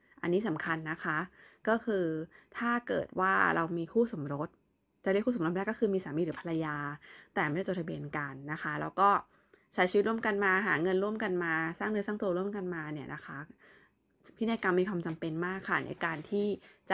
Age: 20-39